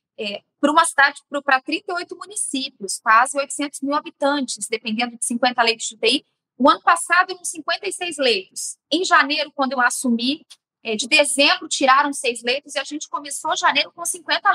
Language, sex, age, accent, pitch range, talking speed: Portuguese, female, 20-39, Brazilian, 240-305 Hz, 165 wpm